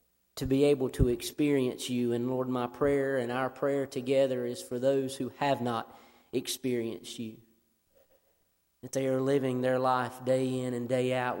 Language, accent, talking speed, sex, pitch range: English, American, 175 wpm, male, 115-135 Hz